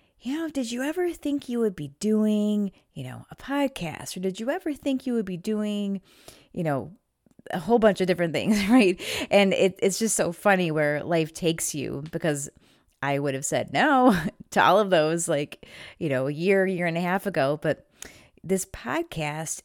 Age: 30-49